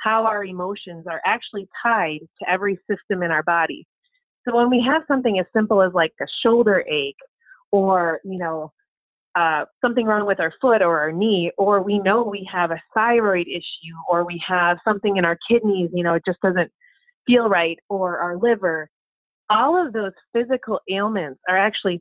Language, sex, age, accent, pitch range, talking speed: English, female, 30-49, American, 180-230 Hz, 185 wpm